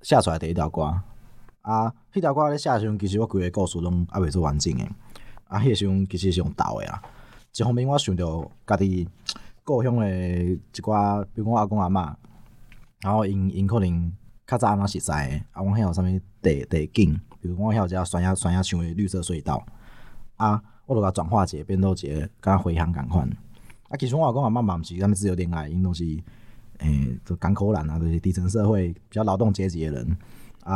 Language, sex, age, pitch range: Chinese, male, 20-39, 90-115 Hz